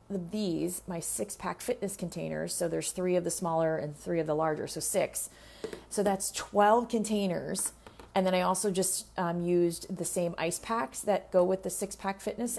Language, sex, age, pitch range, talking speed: English, female, 30-49, 155-190 Hz, 195 wpm